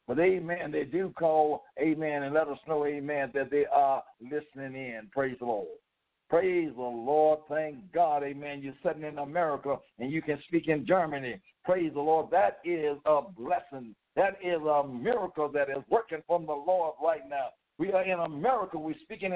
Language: English